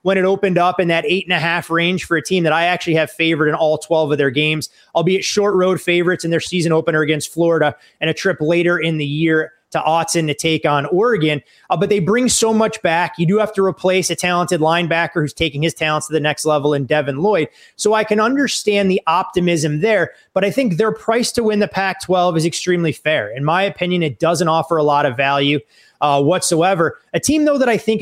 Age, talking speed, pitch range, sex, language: 30-49, 240 wpm, 160-190 Hz, male, English